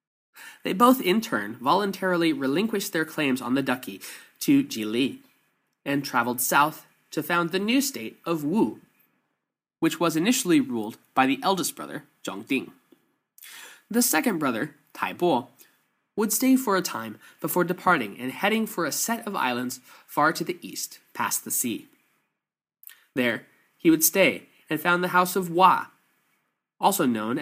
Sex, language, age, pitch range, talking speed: male, English, 20-39, 130-200 Hz, 160 wpm